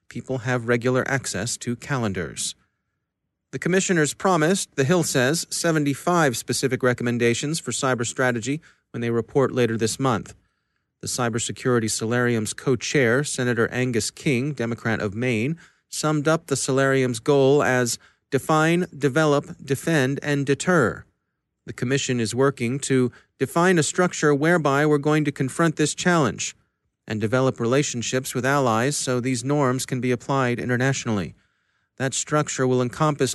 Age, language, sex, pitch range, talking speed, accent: 40-59, English, male, 120-150 Hz, 135 wpm, American